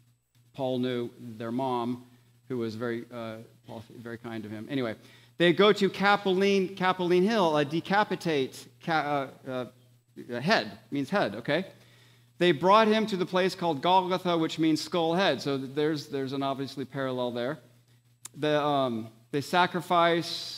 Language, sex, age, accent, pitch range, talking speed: English, male, 40-59, American, 125-165 Hz, 145 wpm